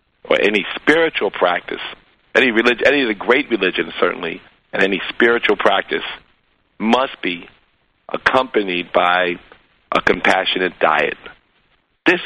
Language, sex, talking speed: English, male, 115 wpm